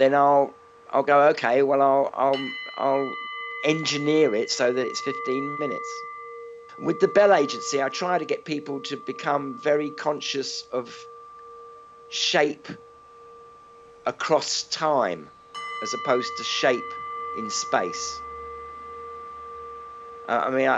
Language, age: English, 50-69